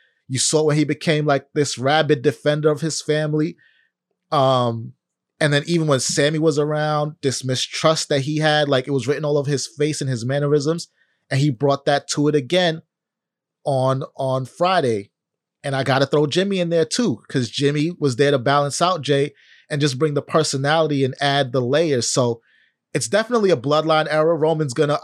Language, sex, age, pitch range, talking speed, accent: English, male, 30-49, 140-155 Hz, 195 wpm, American